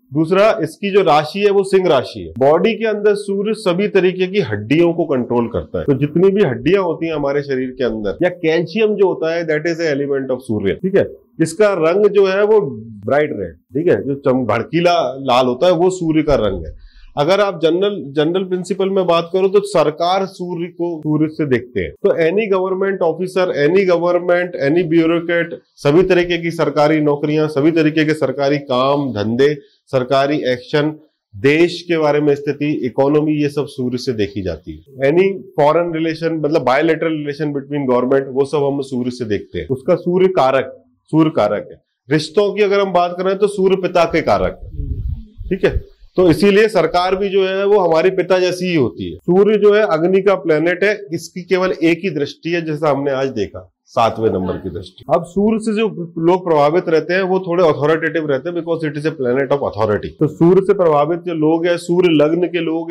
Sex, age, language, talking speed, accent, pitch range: male, 30-49, Hindi, 200 wpm, native, 140-185 Hz